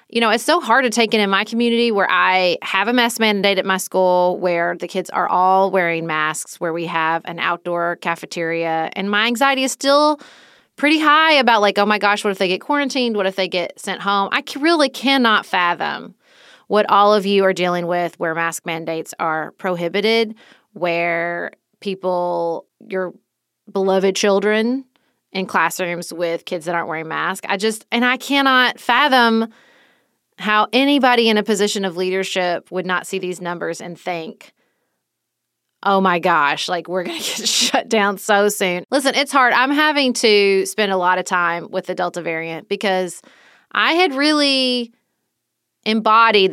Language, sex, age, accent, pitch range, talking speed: English, female, 30-49, American, 175-235 Hz, 175 wpm